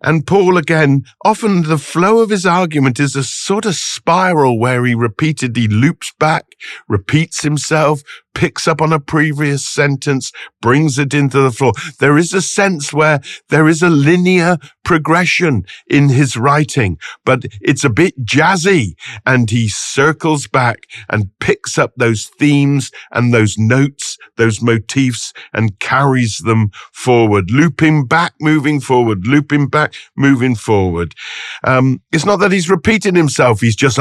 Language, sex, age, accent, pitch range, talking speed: English, male, 50-69, British, 115-155 Hz, 150 wpm